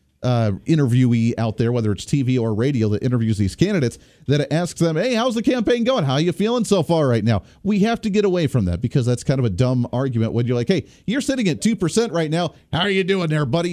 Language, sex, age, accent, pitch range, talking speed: English, male, 40-59, American, 115-175 Hz, 260 wpm